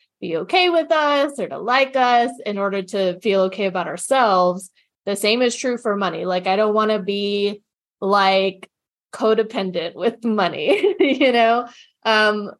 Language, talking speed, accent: English, 160 wpm, American